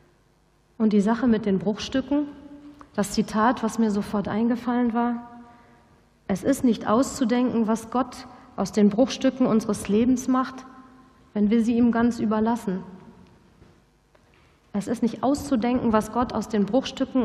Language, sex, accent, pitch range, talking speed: German, female, German, 205-245 Hz, 140 wpm